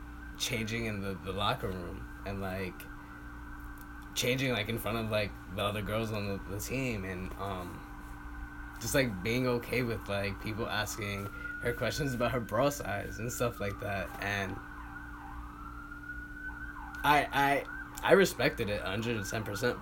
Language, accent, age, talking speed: English, American, 10-29, 145 wpm